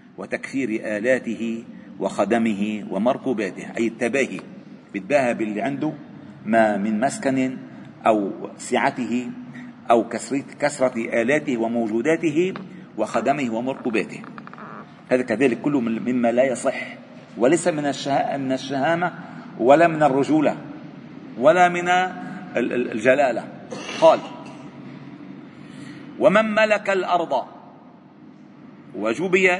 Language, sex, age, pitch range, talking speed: Arabic, male, 40-59, 130-200 Hz, 85 wpm